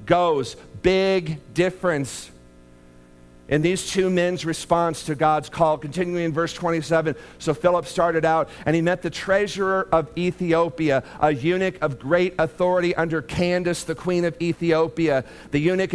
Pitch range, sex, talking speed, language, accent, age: 150-185 Hz, male, 145 wpm, English, American, 50-69